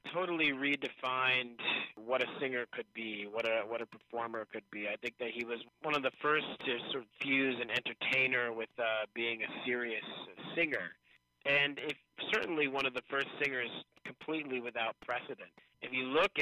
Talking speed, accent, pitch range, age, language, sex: 180 wpm, American, 110-135 Hz, 30-49, English, male